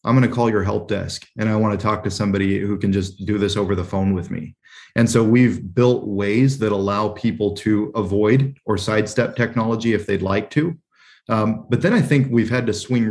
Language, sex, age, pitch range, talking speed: English, male, 20-39, 100-115 Hz, 230 wpm